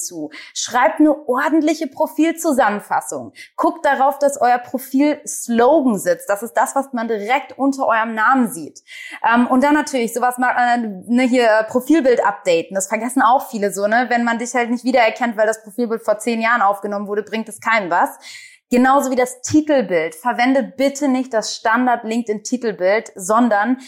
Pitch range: 215-265 Hz